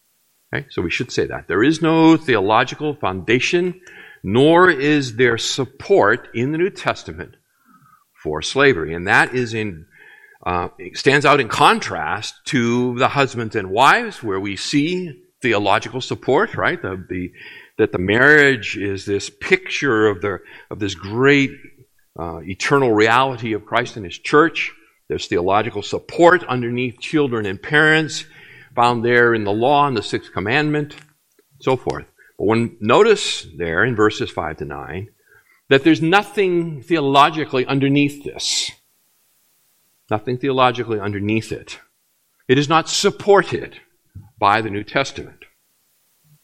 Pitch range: 110-155 Hz